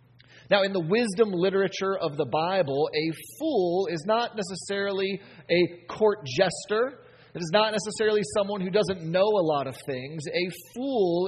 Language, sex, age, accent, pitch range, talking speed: English, male, 30-49, American, 150-210 Hz, 160 wpm